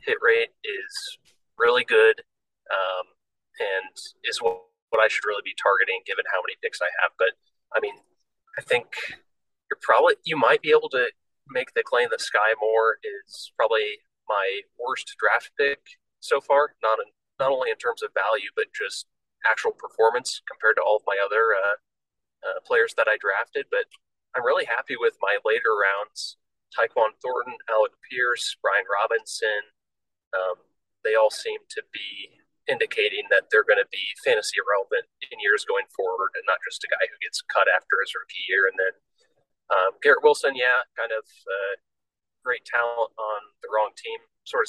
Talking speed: 175 wpm